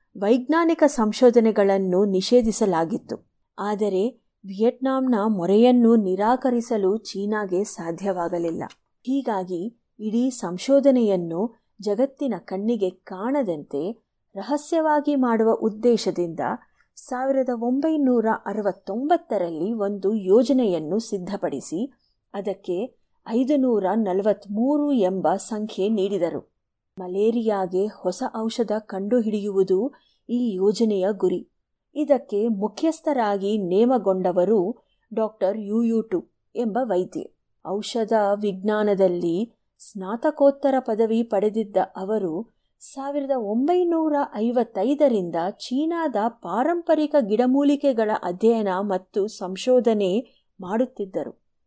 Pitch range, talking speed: 195-250 Hz, 70 wpm